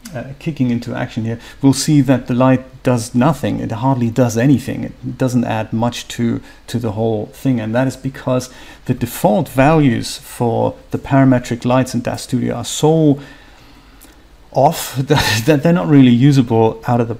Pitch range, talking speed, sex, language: 120-135 Hz, 180 wpm, male, English